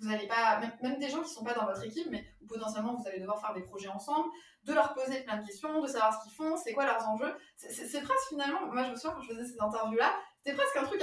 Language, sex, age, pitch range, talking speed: French, female, 20-39, 205-275 Hz, 300 wpm